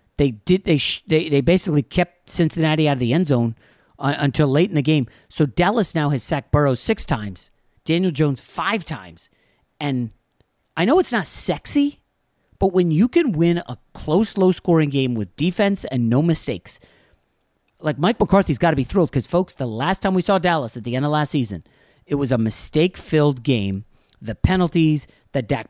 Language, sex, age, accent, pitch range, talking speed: English, male, 40-59, American, 130-170 Hz, 190 wpm